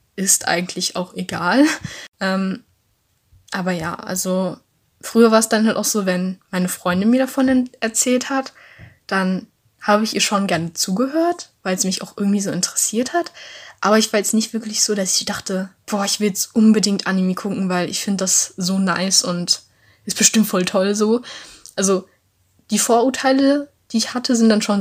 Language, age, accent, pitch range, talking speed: German, 10-29, German, 185-225 Hz, 180 wpm